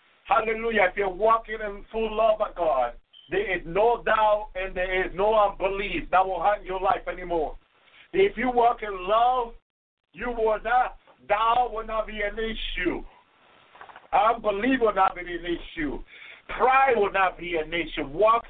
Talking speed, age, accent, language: 165 wpm, 50-69, American, English